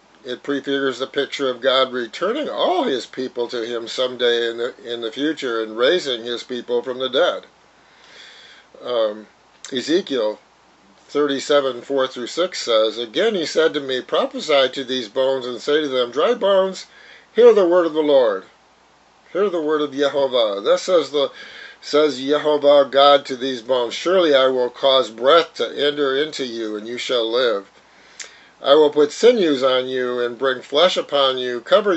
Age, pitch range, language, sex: 50-69, 125-150 Hz, English, male